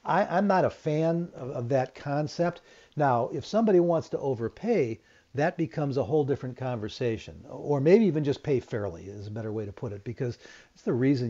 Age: 50-69